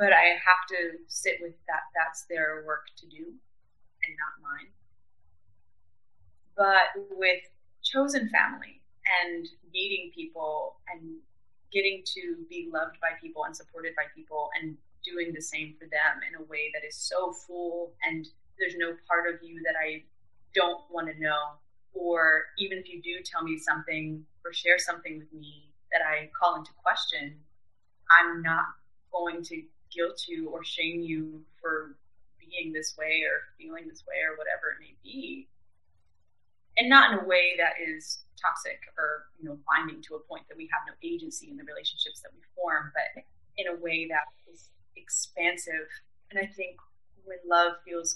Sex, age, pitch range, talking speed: female, 20-39, 155-180 Hz, 170 wpm